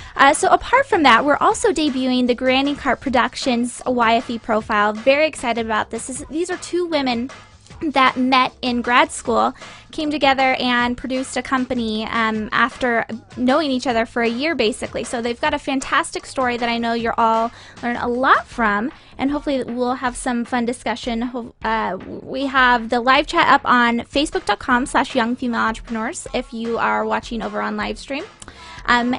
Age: 20-39